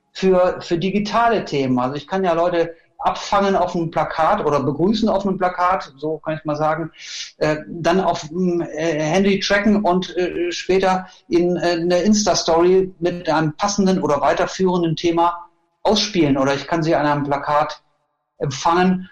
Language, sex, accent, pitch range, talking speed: German, male, German, 160-185 Hz, 165 wpm